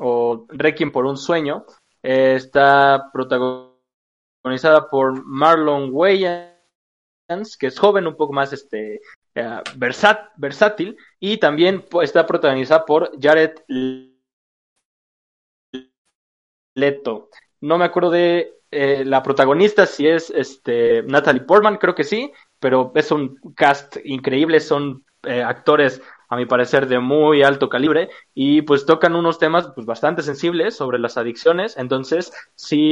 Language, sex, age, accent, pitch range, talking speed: Spanish, male, 20-39, Mexican, 130-170 Hz, 130 wpm